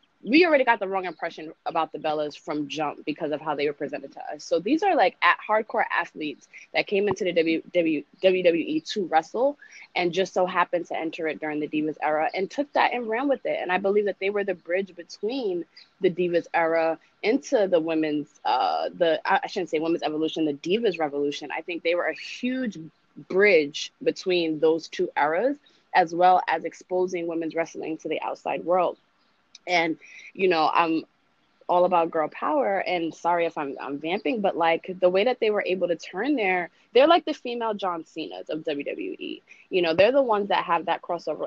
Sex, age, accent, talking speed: female, 20-39, American, 200 wpm